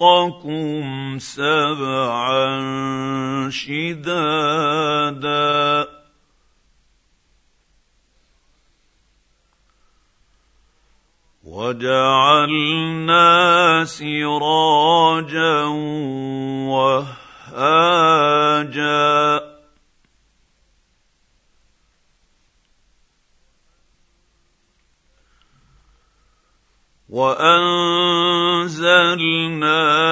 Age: 50-69